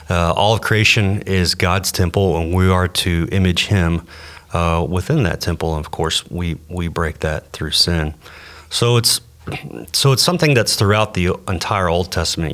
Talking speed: 175 wpm